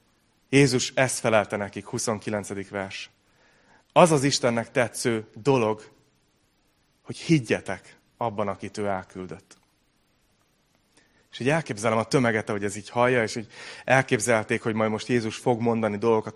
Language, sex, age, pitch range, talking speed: Hungarian, male, 30-49, 110-135 Hz, 130 wpm